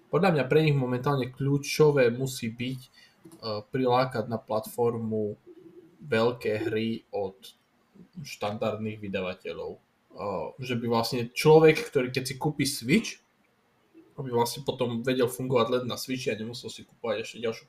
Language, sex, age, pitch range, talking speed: Slovak, male, 20-39, 115-140 Hz, 140 wpm